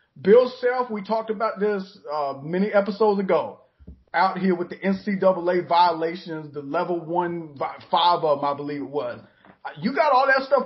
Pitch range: 160-210 Hz